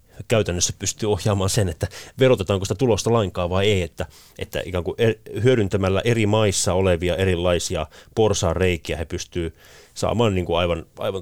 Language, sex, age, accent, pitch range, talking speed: Finnish, male, 30-49, native, 80-100 Hz, 150 wpm